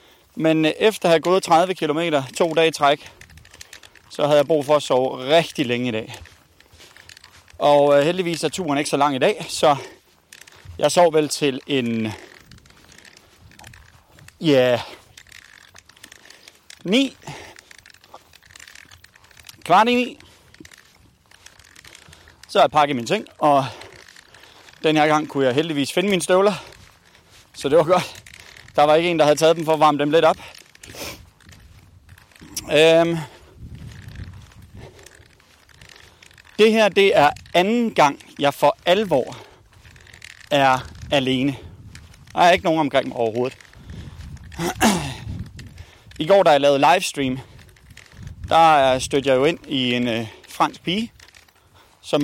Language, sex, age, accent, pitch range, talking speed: Danish, male, 30-49, native, 110-160 Hz, 125 wpm